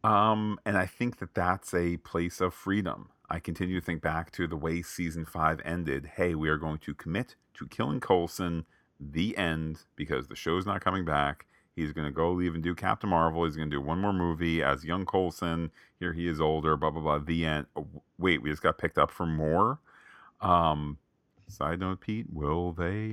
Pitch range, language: 80-100 Hz, English